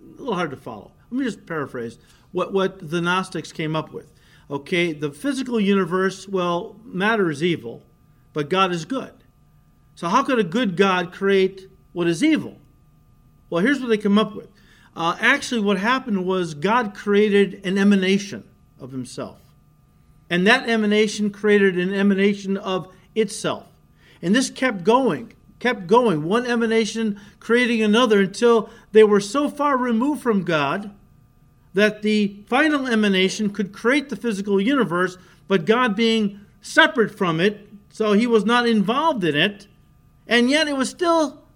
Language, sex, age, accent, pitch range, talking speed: English, male, 50-69, American, 175-230 Hz, 155 wpm